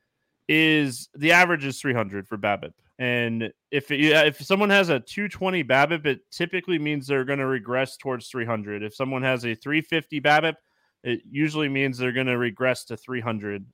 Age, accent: 20-39, American